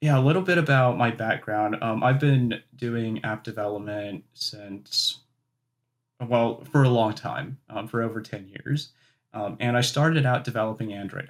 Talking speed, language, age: 165 wpm, English, 30-49